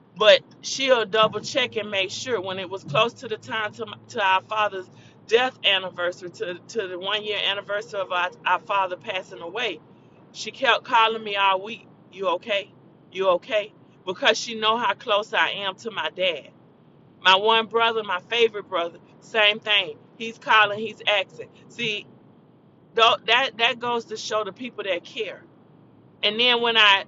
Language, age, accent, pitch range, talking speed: English, 40-59, American, 190-225 Hz, 175 wpm